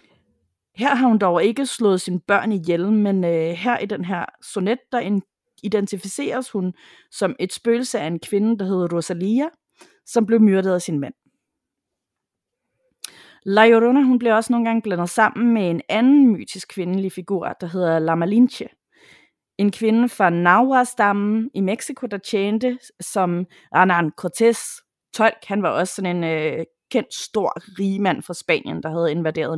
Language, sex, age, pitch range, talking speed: Danish, female, 30-49, 175-230 Hz, 160 wpm